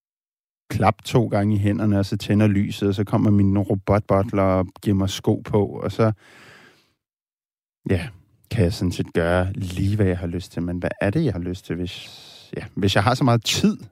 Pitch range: 95-125 Hz